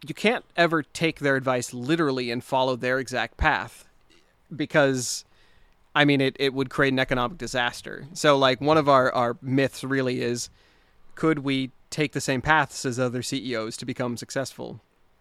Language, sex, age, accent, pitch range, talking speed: English, male, 30-49, American, 125-140 Hz, 170 wpm